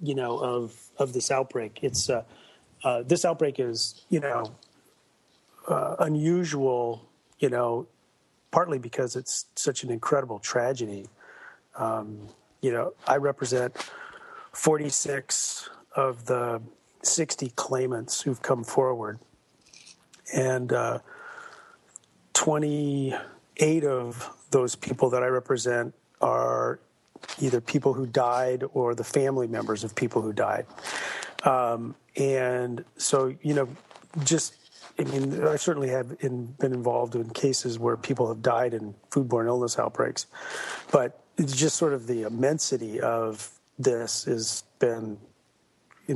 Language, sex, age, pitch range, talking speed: English, male, 40-59, 115-145 Hz, 125 wpm